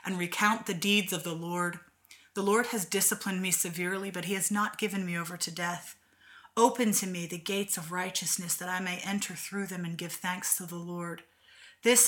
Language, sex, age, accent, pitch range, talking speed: English, female, 30-49, American, 180-210 Hz, 210 wpm